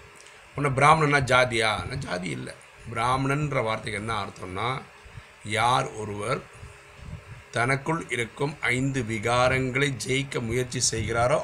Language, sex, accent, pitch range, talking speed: Tamil, male, native, 105-135 Hz, 100 wpm